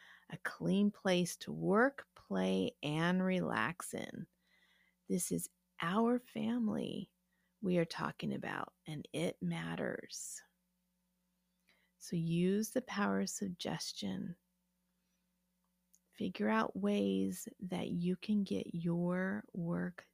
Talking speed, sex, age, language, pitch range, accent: 105 wpm, female, 30-49, English, 180-205 Hz, American